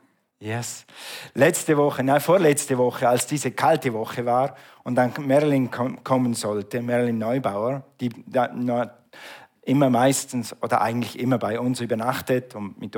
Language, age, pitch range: German, 50-69, 120-145 Hz